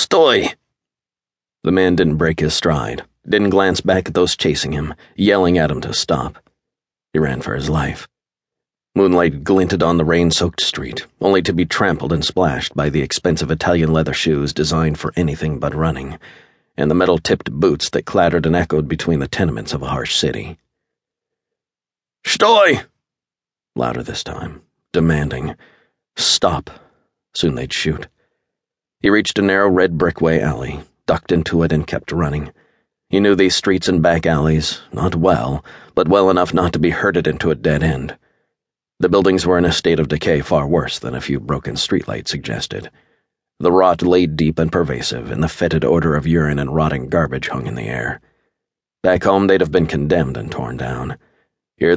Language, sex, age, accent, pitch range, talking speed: English, male, 50-69, American, 75-90 Hz, 170 wpm